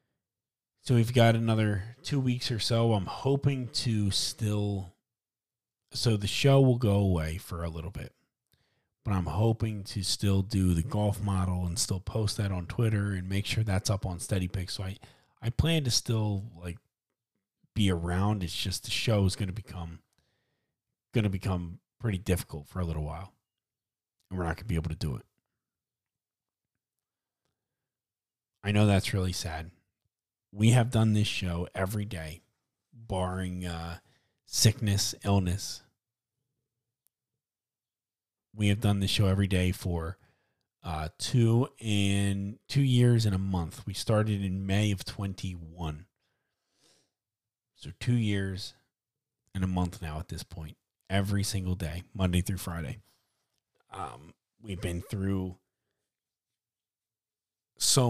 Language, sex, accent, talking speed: English, male, American, 140 wpm